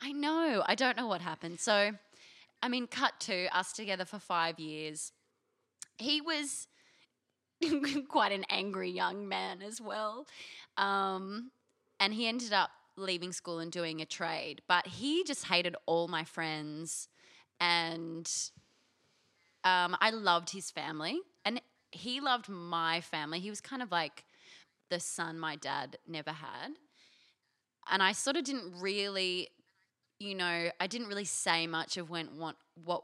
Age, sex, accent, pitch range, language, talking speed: 20-39, female, Australian, 160-205 Hz, English, 145 wpm